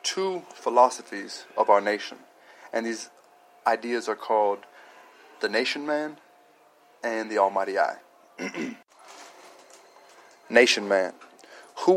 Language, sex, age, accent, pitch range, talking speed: English, male, 20-39, American, 115-150 Hz, 100 wpm